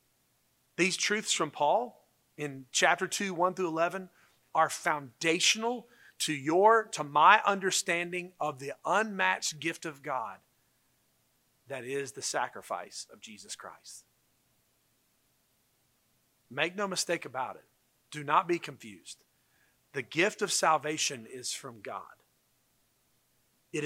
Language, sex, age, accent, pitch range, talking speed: English, male, 40-59, American, 135-180 Hz, 115 wpm